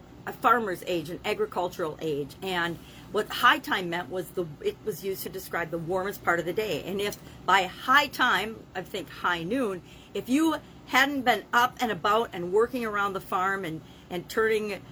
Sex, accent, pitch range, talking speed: female, American, 175-245 Hz, 195 wpm